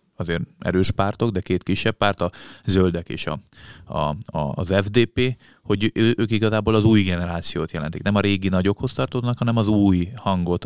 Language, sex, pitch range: Hungarian, male, 85-105 Hz